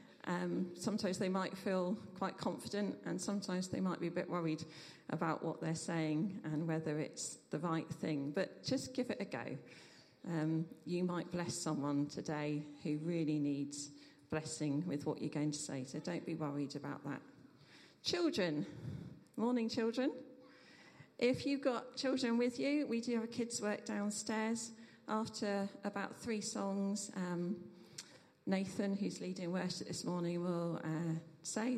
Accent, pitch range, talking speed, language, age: British, 155-210 Hz, 155 wpm, English, 40-59